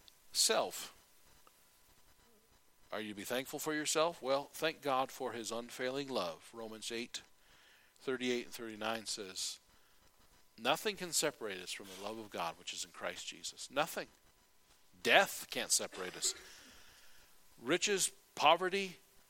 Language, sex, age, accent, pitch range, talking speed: English, male, 50-69, American, 115-145 Hz, 130 wpm